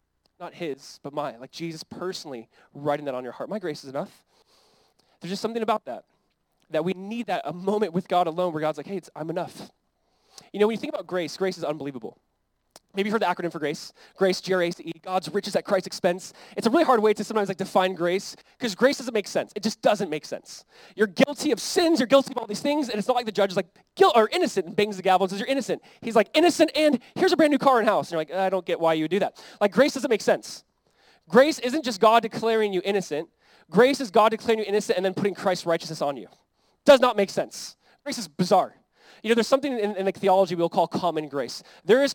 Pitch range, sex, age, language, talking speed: 170-235 Hz, male, 20-39, English, 250 wpm